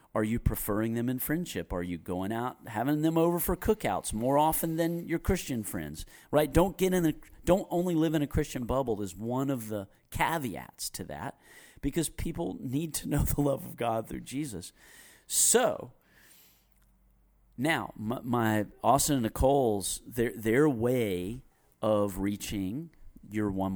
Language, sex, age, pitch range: English, male, 40-59, 100-140 Hz